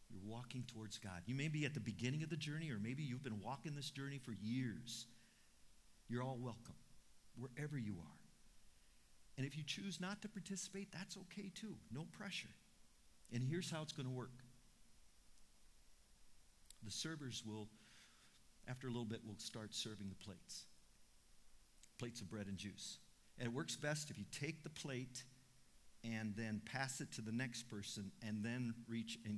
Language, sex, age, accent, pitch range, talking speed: English, male, 50-69, American, 100-135 Hz, 170 wpm